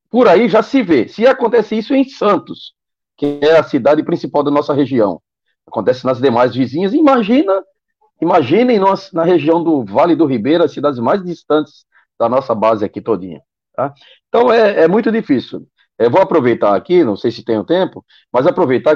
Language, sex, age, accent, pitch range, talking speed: Portuguese, male, 40-59, Brazilian, 135-220 Hz, 180 wpm